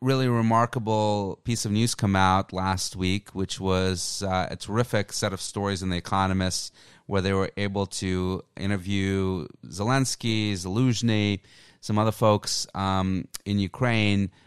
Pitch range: 90-110 Hz